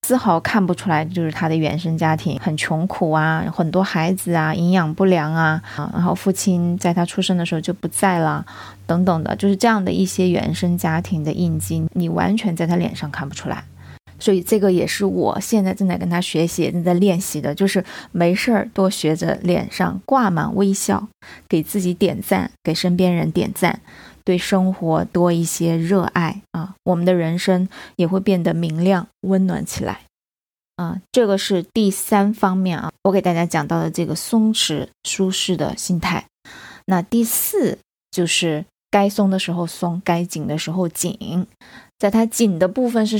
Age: 20-39